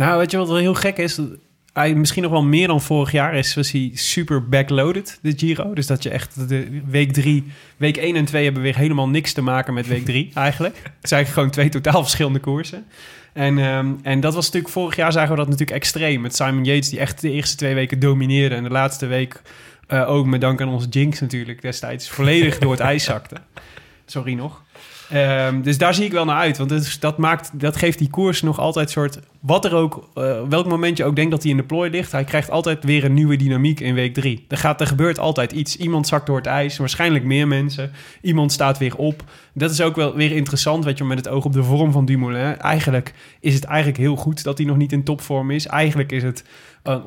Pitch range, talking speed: 135-155 Hz, 240 wpm